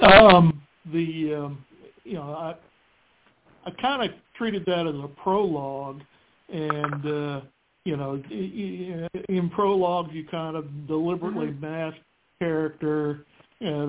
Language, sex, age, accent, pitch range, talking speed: English, male, 60-79, American, 145-175 Hz, 115 wpm